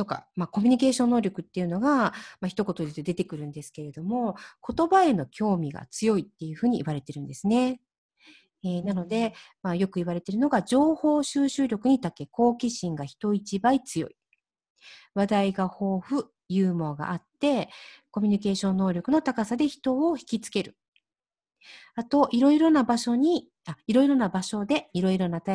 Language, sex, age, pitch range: Japanese, female, 40-59, 180-265 Hz